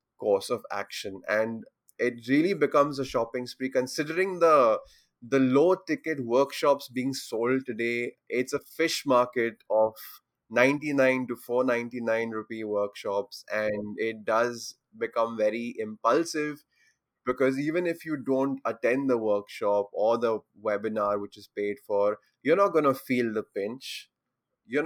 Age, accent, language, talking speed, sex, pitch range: 20-39, Indian, English, 140 wpm, male, 115-145 Hz